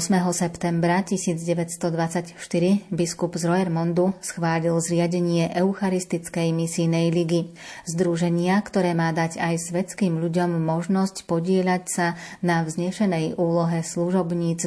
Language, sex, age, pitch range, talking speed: Slovak, female, 30-49, 165-180 Hz, 100 wpm